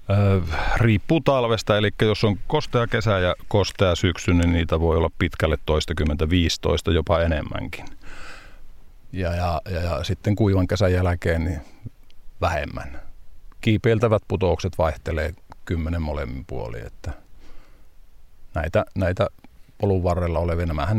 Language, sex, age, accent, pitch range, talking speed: Finnish, male, 50-69, native, 80-95 Hz, 120 wpm